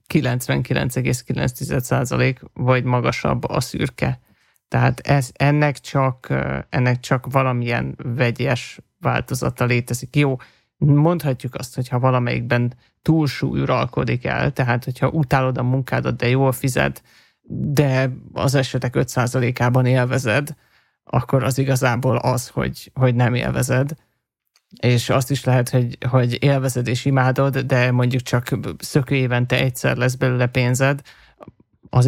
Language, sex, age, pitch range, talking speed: Hungarian, male, 30-49, 125-135 Hz, 120 wpm